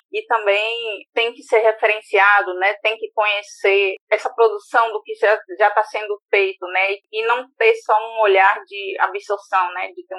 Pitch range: 210-290 Hz